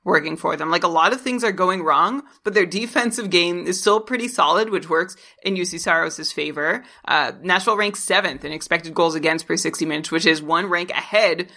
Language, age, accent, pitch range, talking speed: English, 30-49, American, 170-225 Hz, 215 wpm